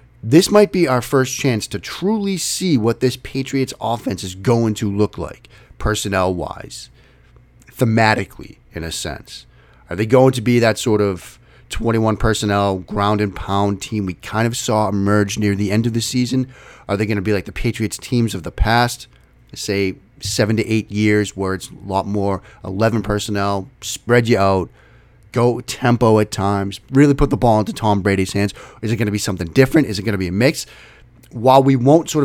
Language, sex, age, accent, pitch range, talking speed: English, male, 30-49, American, 105-140 Hz, 190 wpm